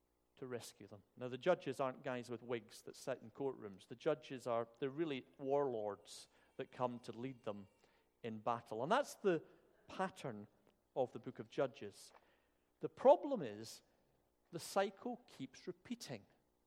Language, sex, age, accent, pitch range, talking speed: English, male, 50-69, British, 120-195 Hz, 155 wpm